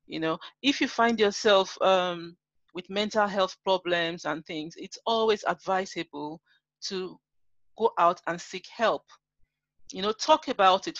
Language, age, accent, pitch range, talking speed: English, 40-59, Nigerian, 180-225 Hz, 145 wpm